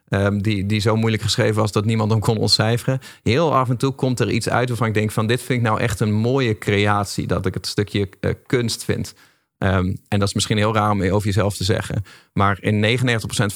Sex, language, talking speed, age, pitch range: male, Dutch, 235 wpm, 40-59, 100-115 Hz